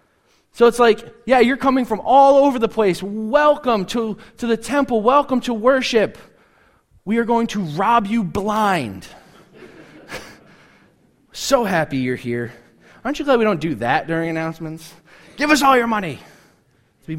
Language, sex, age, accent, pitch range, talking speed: English, male, 20-39, American, 135-220 Hz, 155 wpm